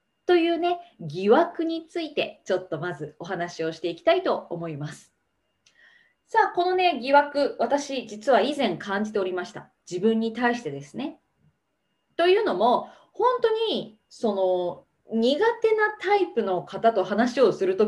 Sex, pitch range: female, 210-335 Hz